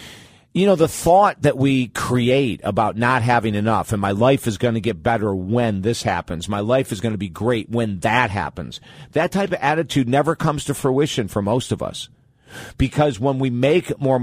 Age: 50-69